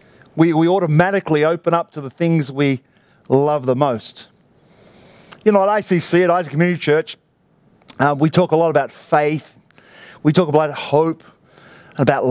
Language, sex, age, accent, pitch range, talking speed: English, male, 40-59, Australian, 150-180 Hz, 155 wpm